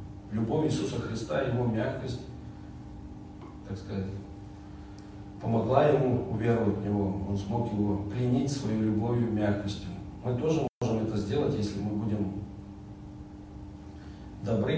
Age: 40-59